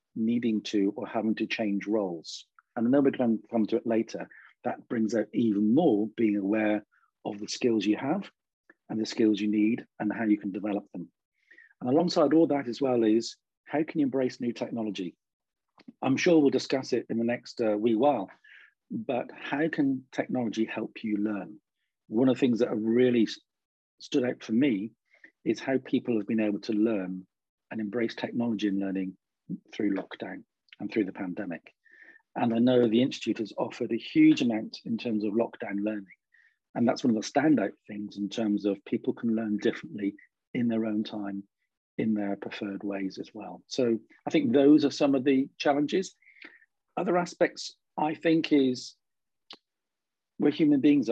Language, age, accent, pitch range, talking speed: English, 40-59, British, 105-140 Hz, 180 wpm